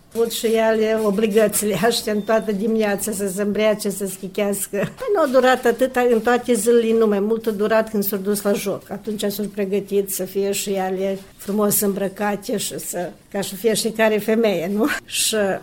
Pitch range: 195-220 Hz